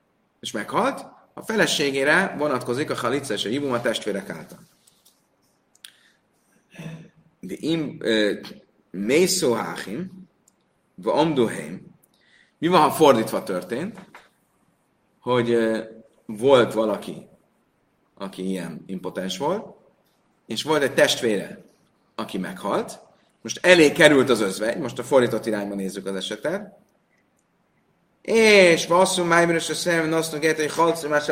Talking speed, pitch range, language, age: 100 wpm, 120-170 Hz, Hungarian, 30-49